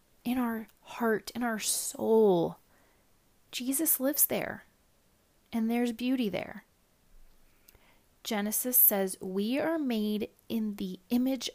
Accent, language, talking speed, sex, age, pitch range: American, English, 110 wpm, female, 30-49, 195-255 Hz